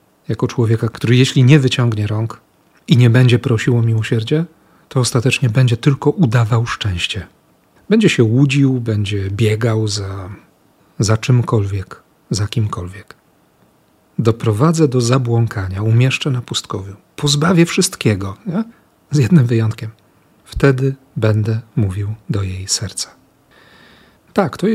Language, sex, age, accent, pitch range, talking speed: Polish, male, 40-59, native, 110-145 Hz, 115 wpm